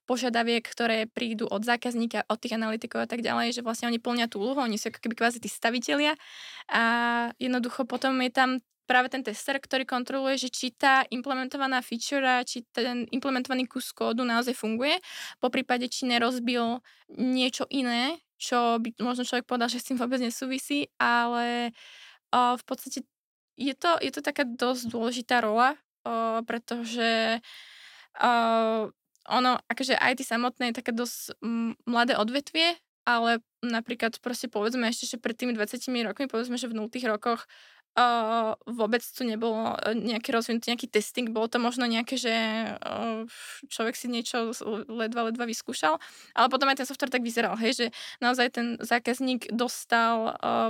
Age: 20-39